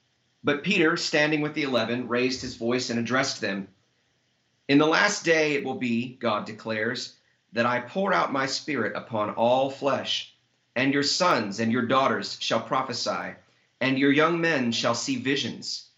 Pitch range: 115-140 Hz